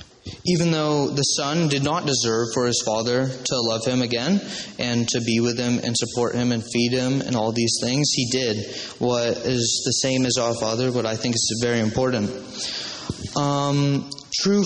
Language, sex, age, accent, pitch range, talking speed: English, male, 20-39, American, 120-140 Hz, 190 wpm